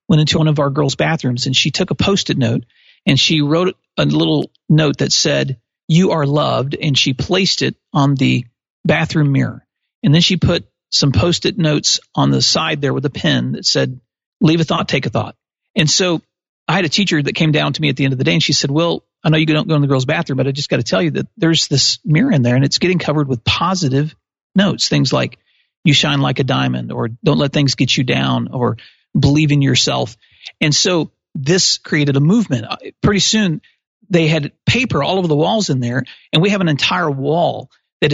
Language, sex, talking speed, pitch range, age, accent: English, male, 230 wpm, 140-175 Hz, 40-59, American